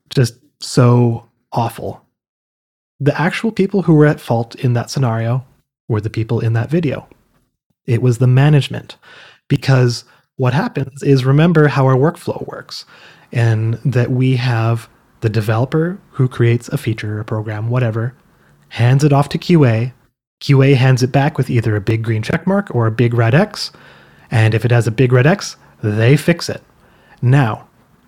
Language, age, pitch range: English, 30-49, 120-150 Hz